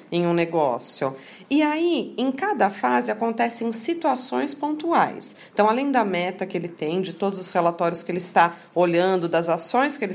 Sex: female